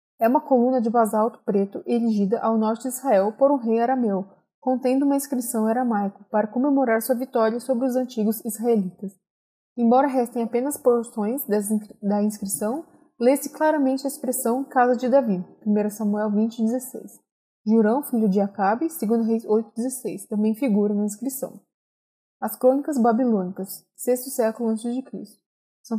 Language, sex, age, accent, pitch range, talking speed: Portuguese, female, 20-39, Brazilian, 210-255 Hz, 145 wpm